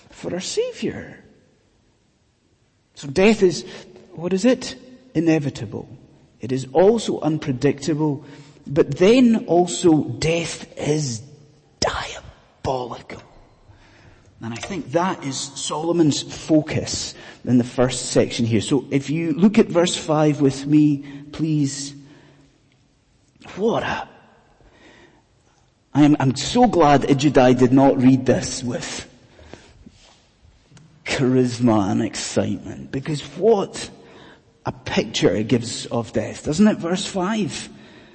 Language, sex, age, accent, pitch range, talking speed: English, male, 30-49, British, 125-170 Hz, 110 wpm